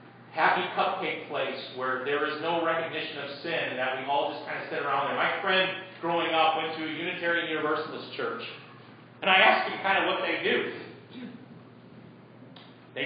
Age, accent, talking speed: 40-59, American, 185 wpm